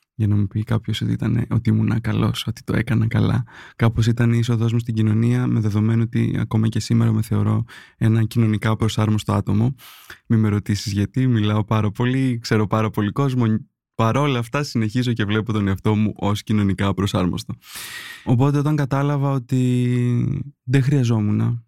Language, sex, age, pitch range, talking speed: Greek, male, 20-39, 110-130 Hz, 170 wpm